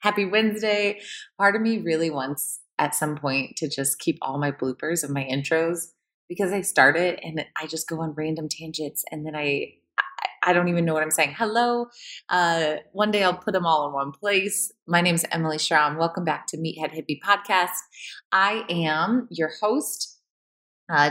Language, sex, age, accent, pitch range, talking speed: English, female, 20-39, American, 155-190 Hz, 195 wpm